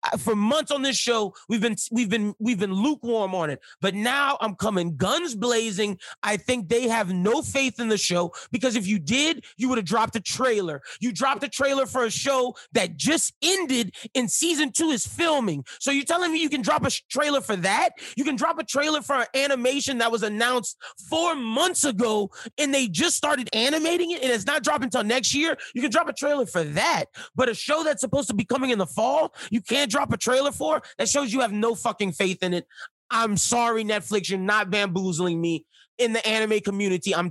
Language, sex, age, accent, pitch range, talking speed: English, male, 30-49, American, 200-275 Hz, 220 wpm